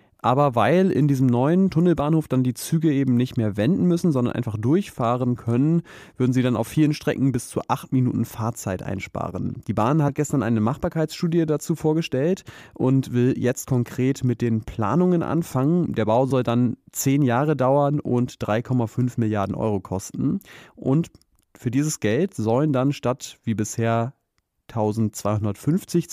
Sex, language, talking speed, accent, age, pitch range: male, German, 155 wpm, German, 30-49, 115-150 Hz